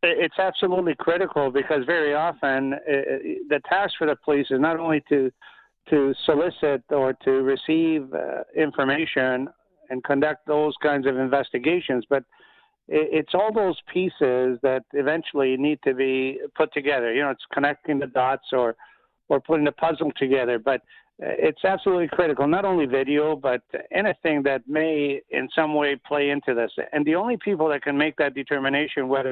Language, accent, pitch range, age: English, American, 135-160 Hz, 50-69